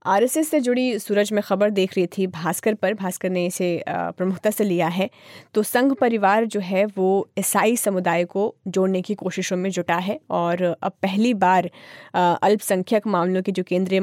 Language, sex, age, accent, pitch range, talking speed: Hindi, female, 20-39, native, 180-210 Hz, 180 wpm